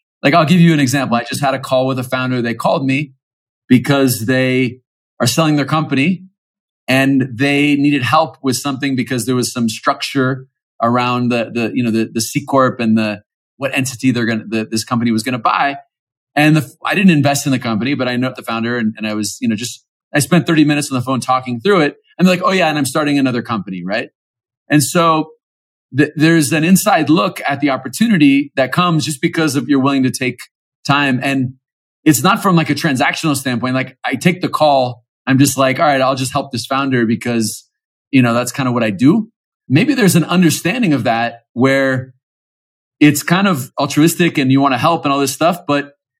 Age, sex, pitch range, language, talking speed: 40-59, male, 125-150 Hz, English, 220 wpm